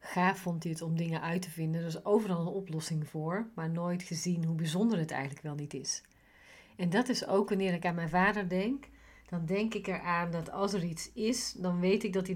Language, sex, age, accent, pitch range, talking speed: Dutch, female, 40-59, Dutch, 160-195 Hz, 240 wpm